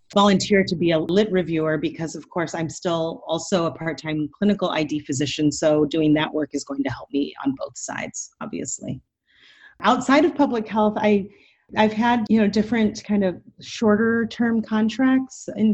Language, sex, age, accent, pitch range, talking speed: English, female, 30-49, American, 155-205 Hz, 170 wpm